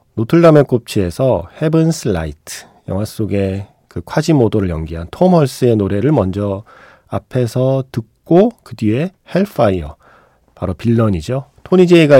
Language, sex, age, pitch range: Korean, male, 40-59, 95-135 Hz